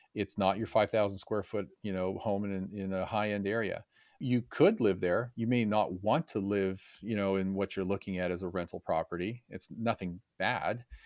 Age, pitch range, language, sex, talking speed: 40-59, 95-110 Hz, English, male, 205 wpm